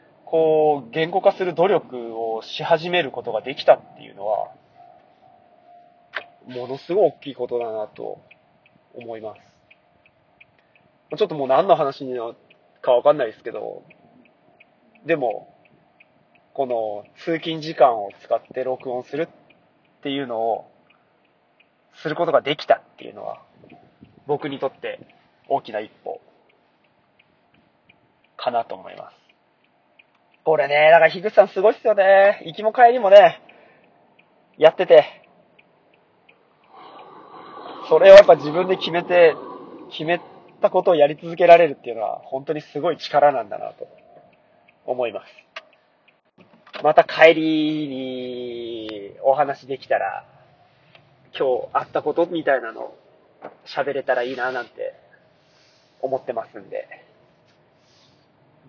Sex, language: male, Japanese